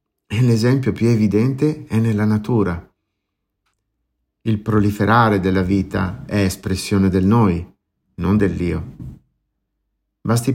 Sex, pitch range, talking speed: male, 95-125 Hz, 100 wpm